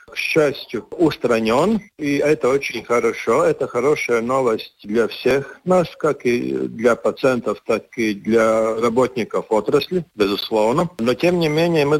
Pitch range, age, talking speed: 115-145 Hz, 50-69, 140 wpm